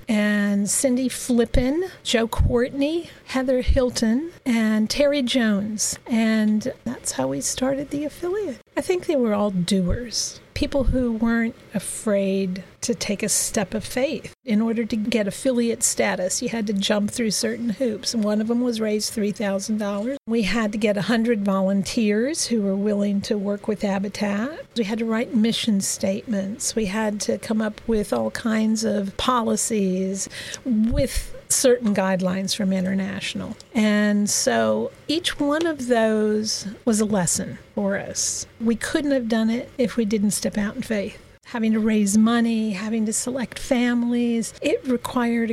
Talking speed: 155 wpm